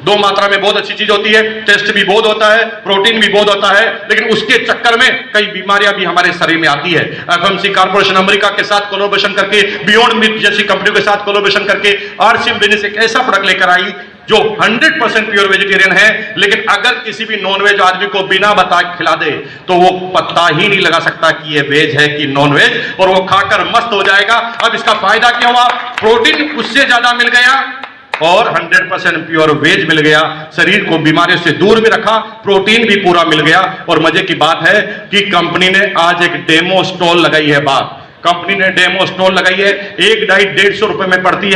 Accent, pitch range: native, 175-210 Hz